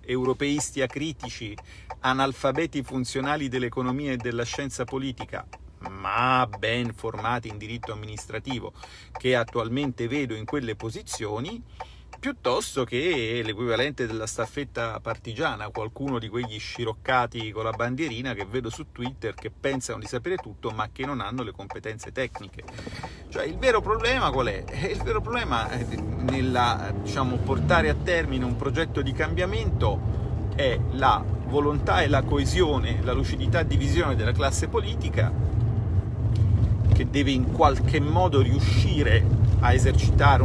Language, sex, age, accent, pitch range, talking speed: Italian, male, 40-59, native, 105-120 Hz, 135 wpm